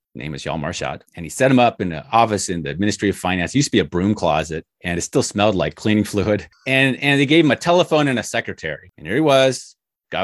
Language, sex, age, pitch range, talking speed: English, male, 30-49, 95-135 Hz, 265 wpm